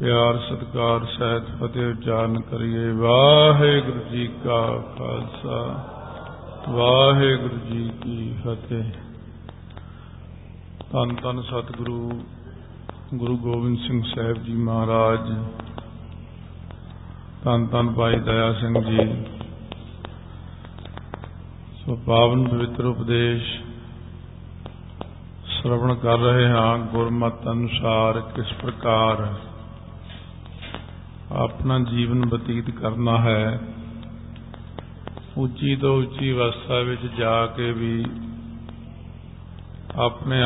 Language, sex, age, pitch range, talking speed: Punjabi, male, 50-69, 95-120 Hz, 80 wpm